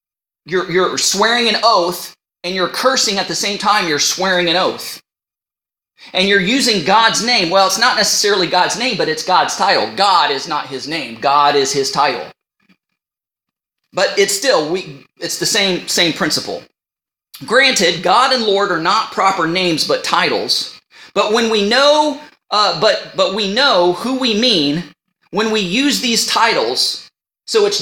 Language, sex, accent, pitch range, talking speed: English, male, American, 175-240 Hz, 170 wpm